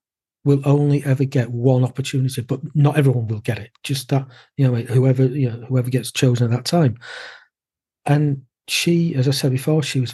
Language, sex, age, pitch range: English, male, 40-59, 125-140 Hz